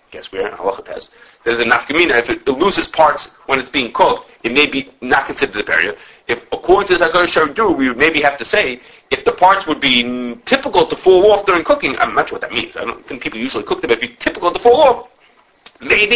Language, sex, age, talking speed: English, male, 30-49, 250 wpm